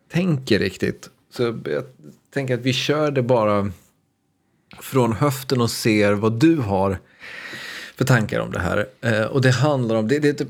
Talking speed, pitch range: 160 wpm, 105-130 Hz